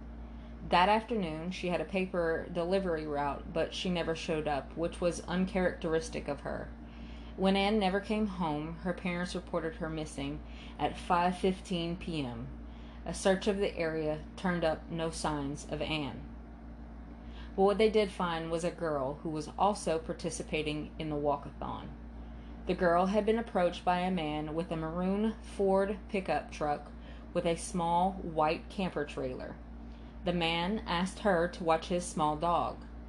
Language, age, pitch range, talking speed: English, 20-39, 150-185 Hz, 155 wpm